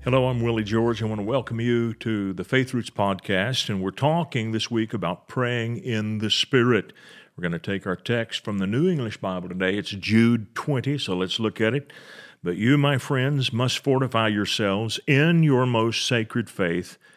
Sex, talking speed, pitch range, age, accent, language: male, 195 wpm, 100-130 Hz, 50-69, American, English